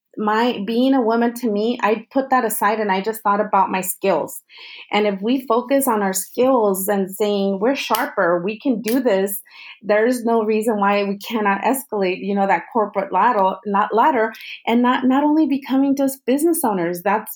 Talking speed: 195 wpm